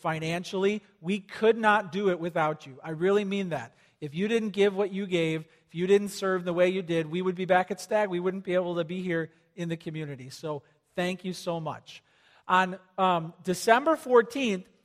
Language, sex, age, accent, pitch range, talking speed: English, male, 40-59, American, 170-215 Hz, 210 wpm